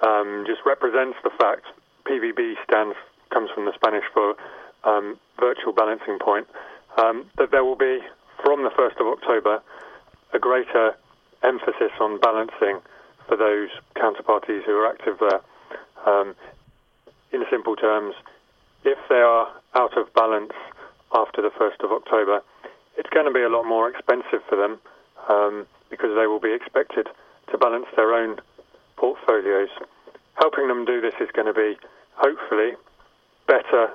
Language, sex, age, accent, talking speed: English, male, 30-49, British, 150 wpm